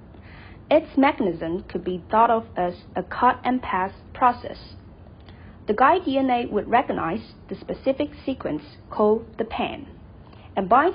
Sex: female